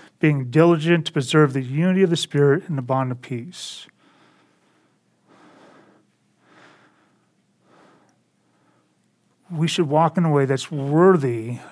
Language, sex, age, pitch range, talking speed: English, male, 40-59, 145-170 Hz, 115 wpm